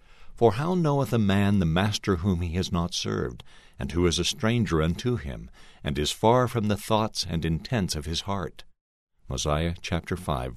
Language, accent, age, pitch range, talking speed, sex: English, American, 60-79, 85-115 Hz, 185 wpm, male